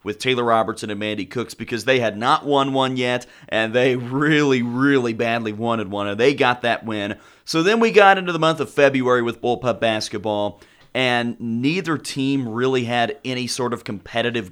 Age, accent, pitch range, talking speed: 30-49, American, 115-140 Hz, 190 wpm